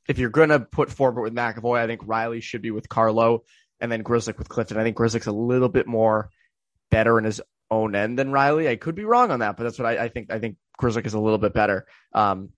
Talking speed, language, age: 260 wpm, English, 20-39